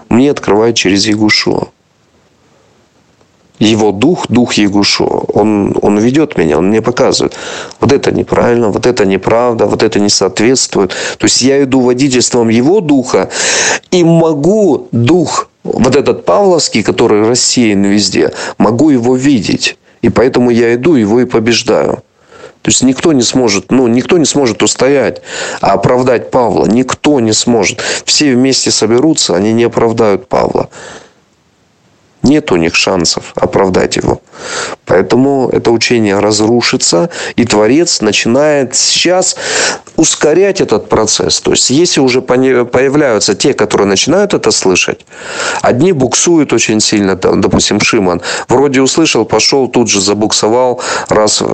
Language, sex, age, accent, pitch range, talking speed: Russian, male, 40-59, native, 110-135 Hz, 130 wpm